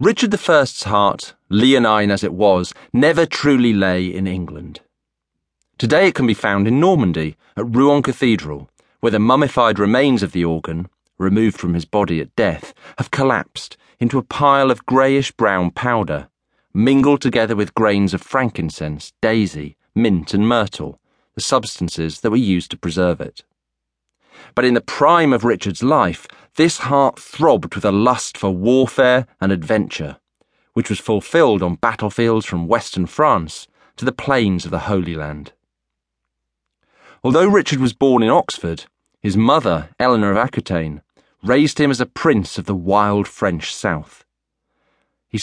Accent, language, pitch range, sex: British, English, 85-125 Hz, male